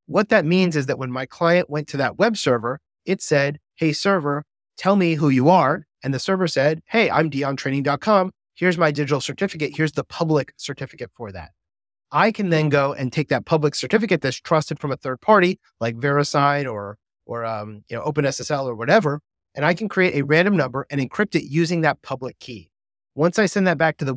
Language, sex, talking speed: English, male, 210 wpm